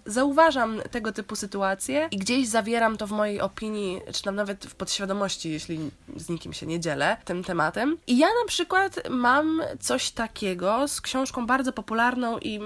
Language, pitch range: Polish, 200-285 Hz